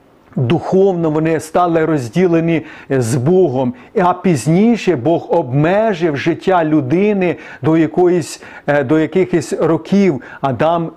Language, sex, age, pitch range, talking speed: Ukrainian, male, 40-59, 150-180 Hz, 100 wpm